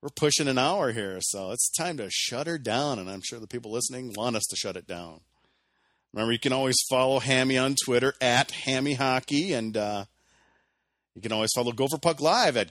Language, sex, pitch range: English, male, 105-140 Hz